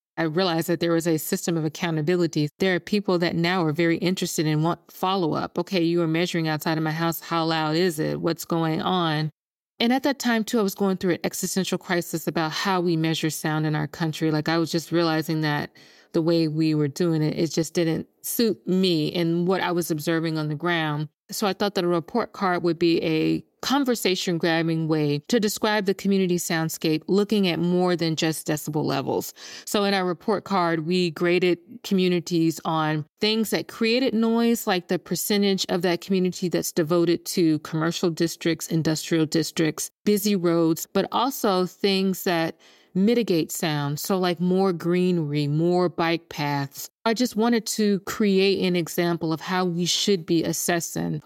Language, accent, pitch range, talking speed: English, American, 160-190 Hz, 185 wpm